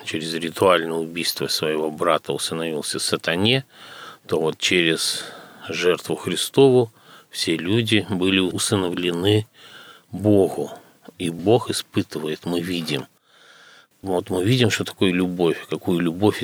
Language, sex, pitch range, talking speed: Russian, male, 85-105 Hz, 115 wpm